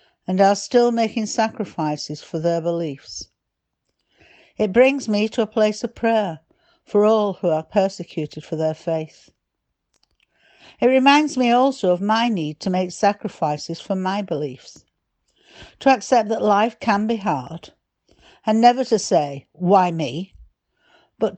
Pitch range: 175-220 Hz